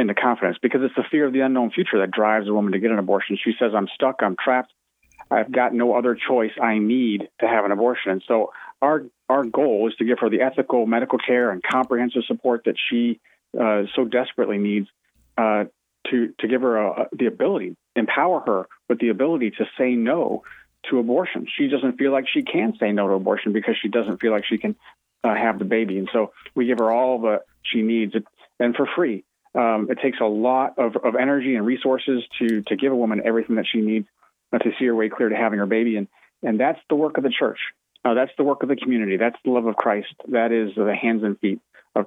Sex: male